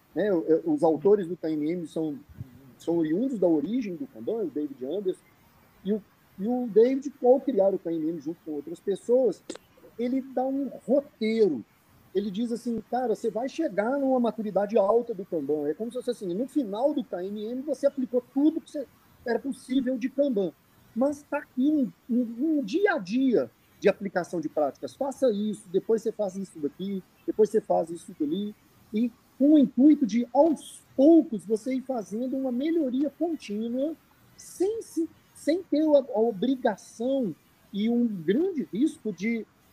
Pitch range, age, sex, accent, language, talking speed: 195-270 Hz, 40-59, male, Brazilian, Portuguese, 165 wpm